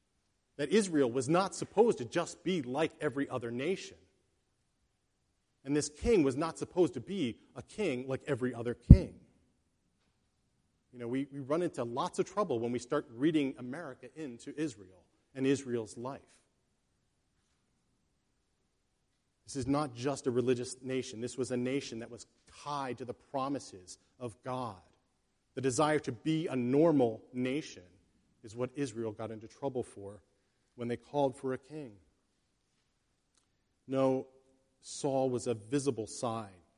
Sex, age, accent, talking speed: male, 40-59, American, 145 wpm